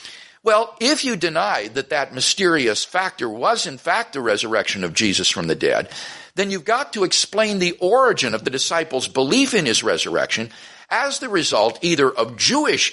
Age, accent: 50-69, American